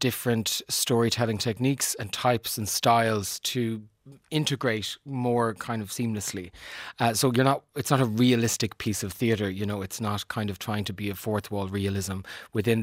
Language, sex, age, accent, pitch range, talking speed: English, male, 30-49, Irish, 105-120 Hz, 180 wpm